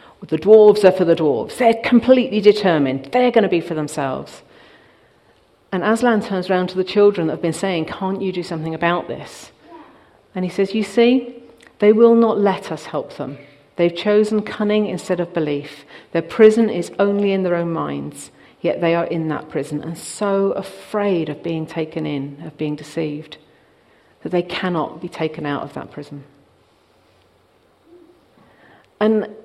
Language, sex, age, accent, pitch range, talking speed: English, female, 40-59, British, 165-215 Hz, 170 wpm